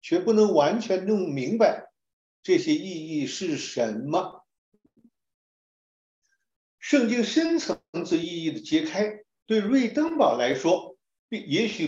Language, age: Chinese, 50-69